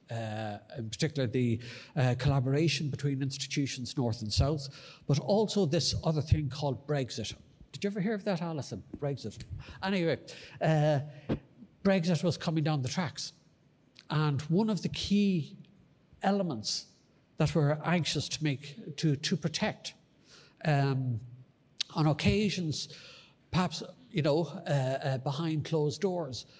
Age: 60-79